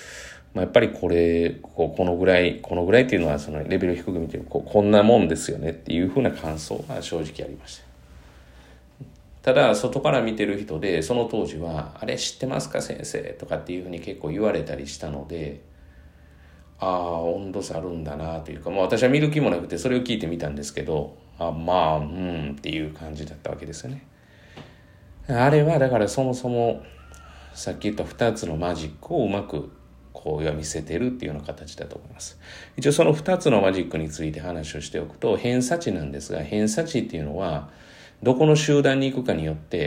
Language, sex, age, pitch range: Japanese, male, 40-59, 75-105 Hz